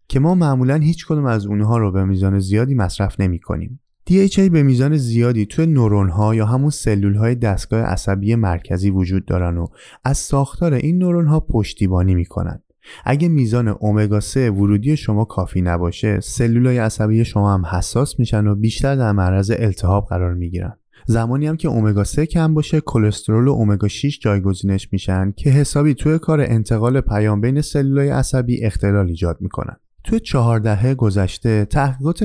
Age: 20-39